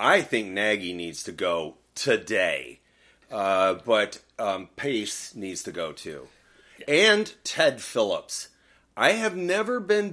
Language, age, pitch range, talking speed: English, 30-49, 110-175 Hz, 130 wpm